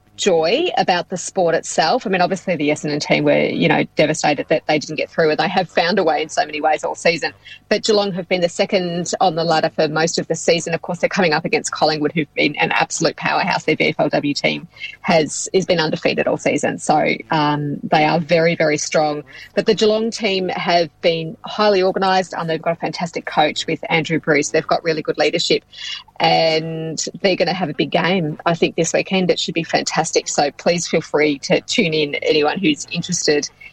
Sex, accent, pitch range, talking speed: female, Australian, 155-195 Hz, 215 wpm